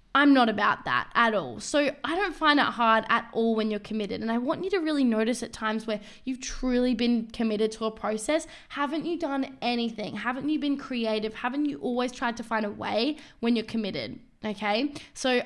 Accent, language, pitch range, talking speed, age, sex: Australian, English, 215-260 Hz, 215 wpm, 10-29, female